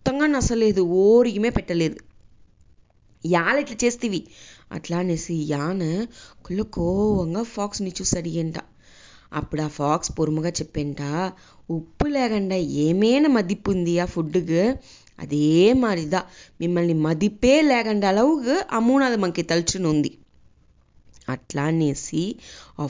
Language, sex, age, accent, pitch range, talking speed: English, female, 20-39, Indian, 160-230 Hz, 75 wpm